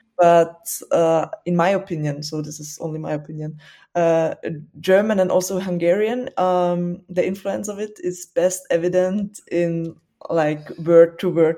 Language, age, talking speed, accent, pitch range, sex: English, 20-39, 140 wpm, German, 165-185 Hz, female